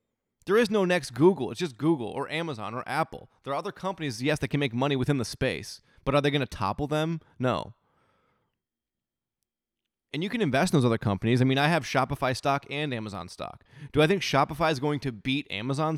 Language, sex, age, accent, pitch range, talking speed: English, male, 20-39, American, 115-150 Hz, 220 wpm